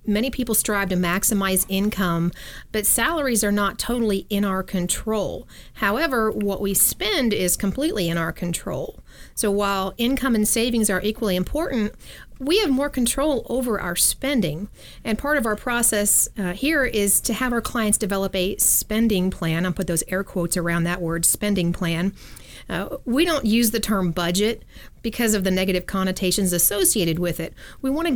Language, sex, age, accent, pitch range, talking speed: English, female, 40-59, American, 190-235 Hz, 175 wpm